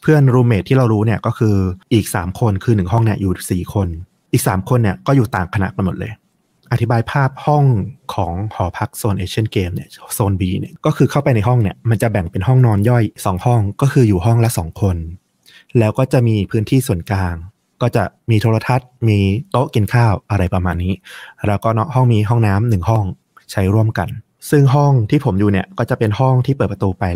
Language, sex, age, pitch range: Thai, male, 20-39, 95-120 Hz